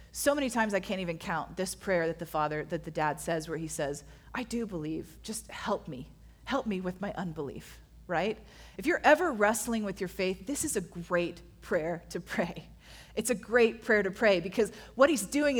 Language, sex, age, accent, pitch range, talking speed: English, female, 30-49, American, 180-245 Hz, 210 wpm